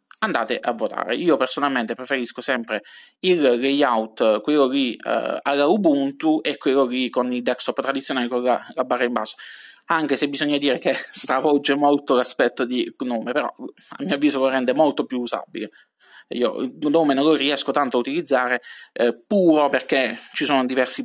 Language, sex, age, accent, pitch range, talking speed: Italian, male, 20-39, native, 120-145 Hz, 175 wpm